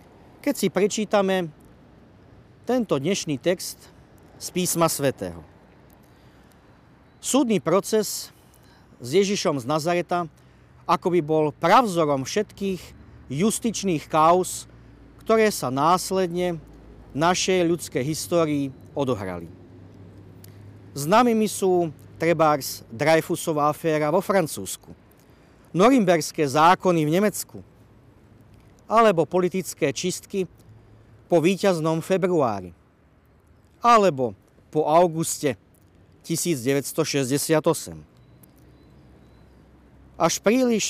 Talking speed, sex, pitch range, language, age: 75 wpm, male, 125-180 Hz, Slovak, 40-59